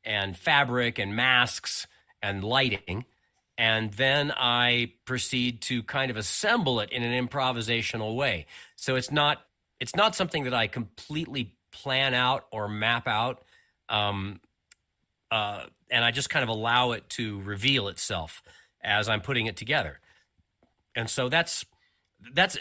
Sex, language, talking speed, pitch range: male, English, 145 wpm, 110-135 Hz